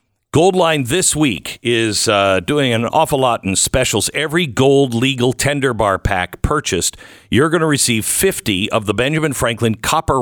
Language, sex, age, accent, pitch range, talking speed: English, male, 50-69, American, 95-130 Hz, 165 wpm